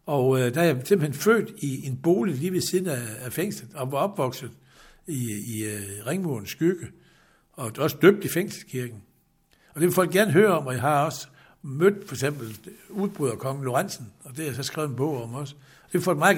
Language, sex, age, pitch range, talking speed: Danish, male, 60-79, 130-180 Hz, 225 wpm